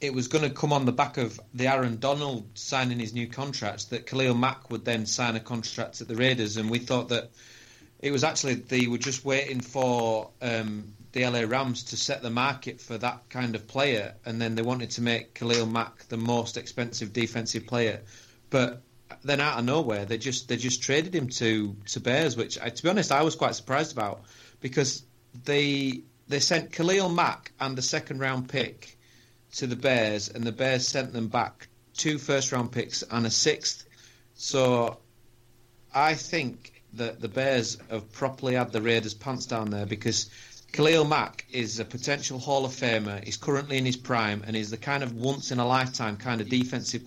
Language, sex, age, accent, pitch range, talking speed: English, male, 30-49, British, 115-130 Hz, 200 wpm